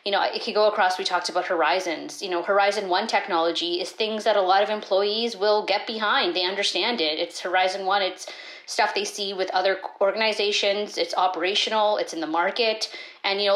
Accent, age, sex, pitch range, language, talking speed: American, 30-49, female, 185-230 Hz, English, 210 wpm